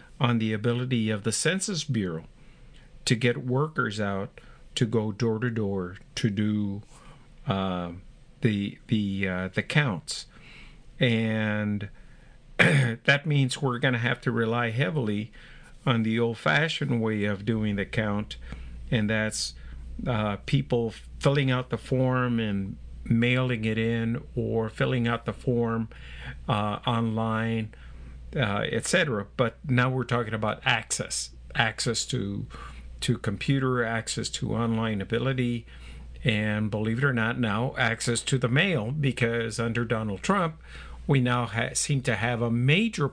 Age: 50-69